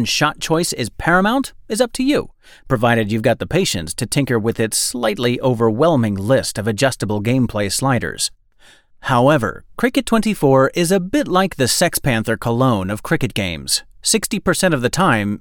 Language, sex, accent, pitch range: English, male, American, 115-180 Hz